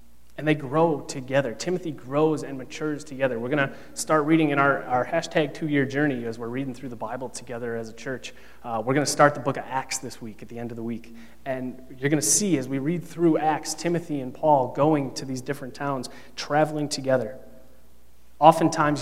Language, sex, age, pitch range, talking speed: English, male, 30-49, 130-155 Hz, 215 wpm